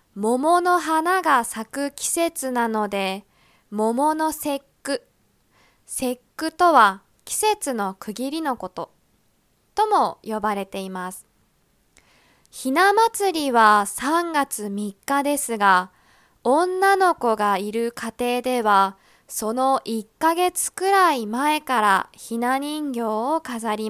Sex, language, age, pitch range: female, Japanese, 20-39, 220-320 Hz